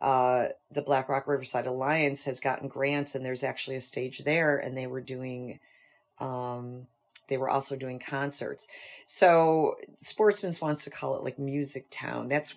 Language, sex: English, female